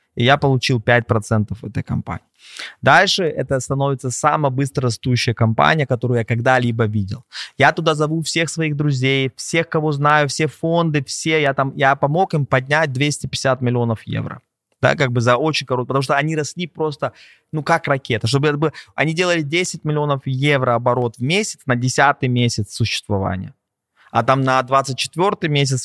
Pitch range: 120-145 Hz